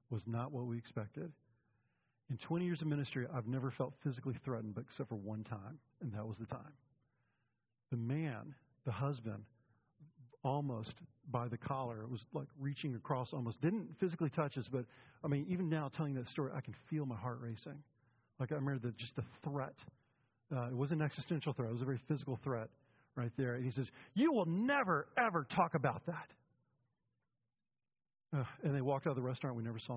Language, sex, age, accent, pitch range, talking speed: English, male, 40-59, American, 120-145 Hz, 200 wpm